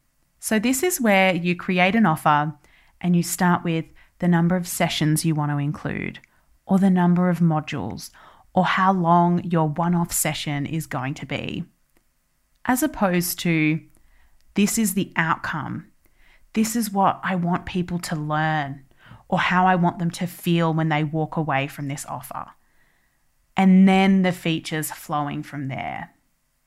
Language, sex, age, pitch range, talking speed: English, female, 30-49, 155-190 Hz, 160 wpm